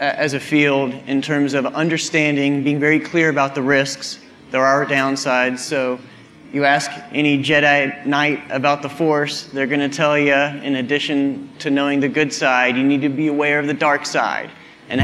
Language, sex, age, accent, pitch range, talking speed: English, male, 30-49, American, 135-150 Hz, 185 wpm